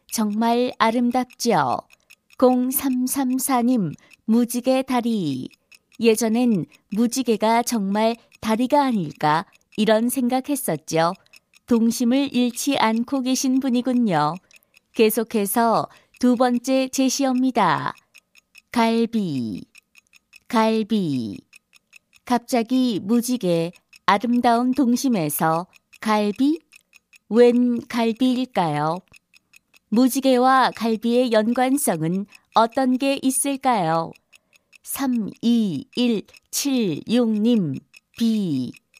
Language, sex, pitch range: Korean, female, 215-255 Hz